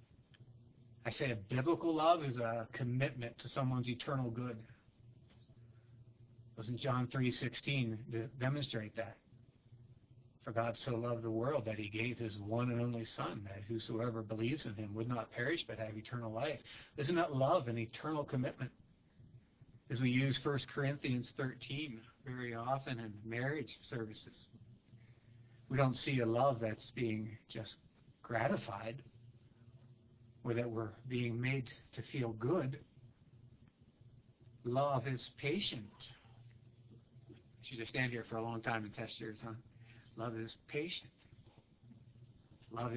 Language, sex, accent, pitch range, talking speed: English, male, American, 115-130 Hz, 135 wpm